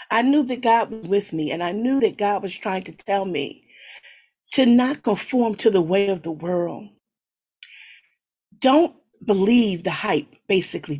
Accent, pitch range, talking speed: American, 195-270 Hz, 170 wpm